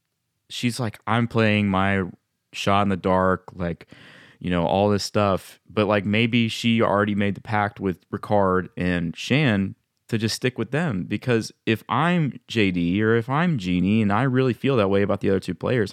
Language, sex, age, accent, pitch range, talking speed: English, male, 20-39, American, 95-120 Hz, 190 wpm